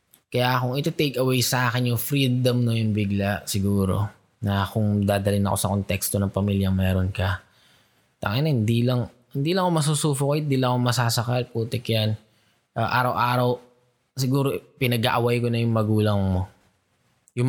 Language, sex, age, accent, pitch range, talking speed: Filipino, male, 20-39, native, 120-185 Hz, 165 wpm